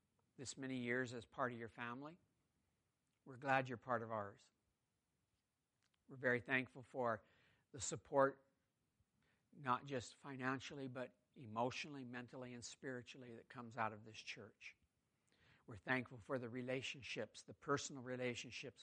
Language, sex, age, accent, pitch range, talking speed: English, male, 60-79, American, 115-135 Hz, 135 wpm